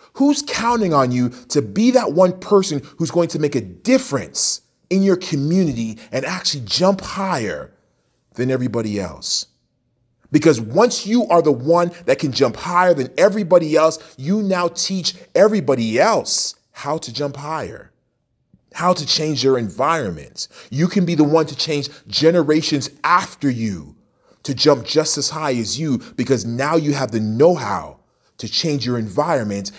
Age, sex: 30-49, male